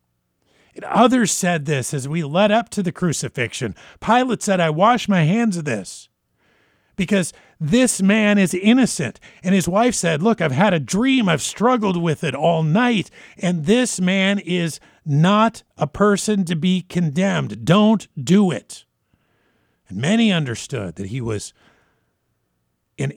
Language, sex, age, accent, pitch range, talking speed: English, male, 50-69, American, 140-200 Hz, 150 wpm